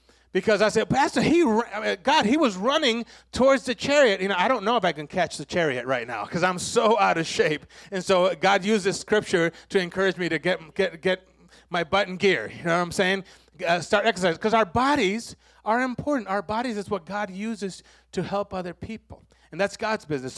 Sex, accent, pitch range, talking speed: male, American, 165-225 Hz, 220 wpm